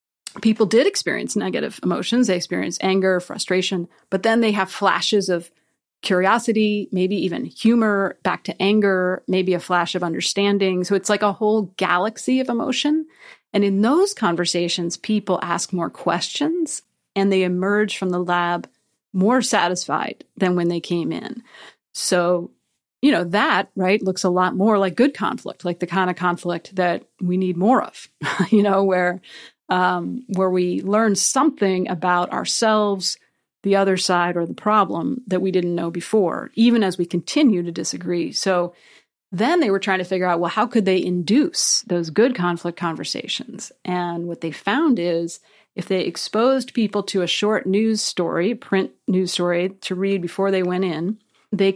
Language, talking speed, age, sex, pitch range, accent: English, 170 wpm, 30-49, female, 180-215 Hz, American